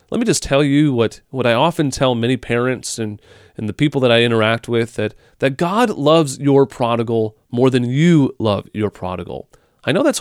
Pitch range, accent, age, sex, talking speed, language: 115-145 Hz, American, 30-49, male, 205 wpm, English